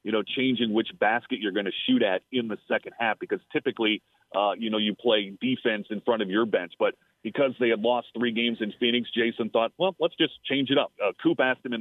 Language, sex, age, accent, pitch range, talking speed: English, male, 30-49, American, 120-160 Hz, 250 wpm